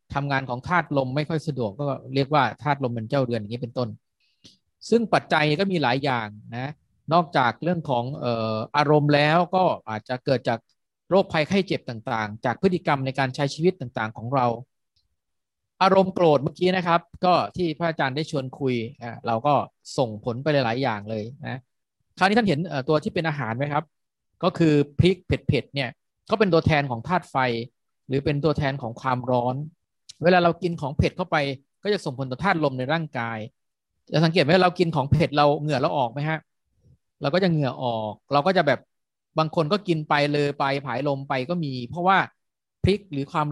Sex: male